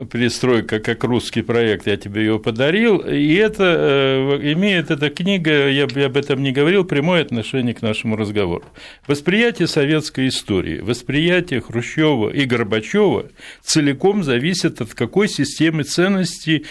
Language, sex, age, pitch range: Russian, male, 60-79, 125-160 Hz